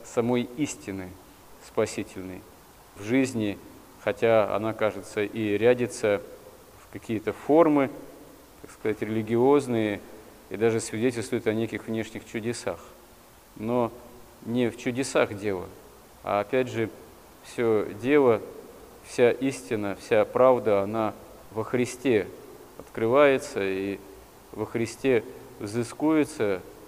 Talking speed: 100 wpm